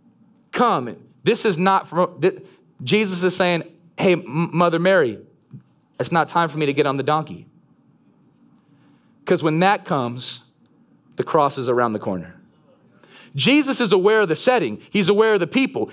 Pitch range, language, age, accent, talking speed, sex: 165-220 Hz, English, 30-49, American, 165 wpm, male